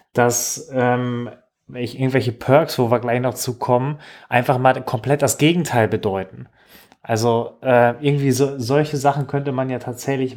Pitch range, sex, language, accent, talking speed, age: 120-140 Hz, male, German, German, 145 wpm, 30-49